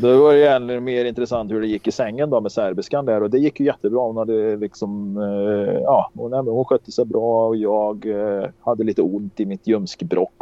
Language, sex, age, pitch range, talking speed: Swedish, male, 30-49, 100-145 Hz, 230 wpm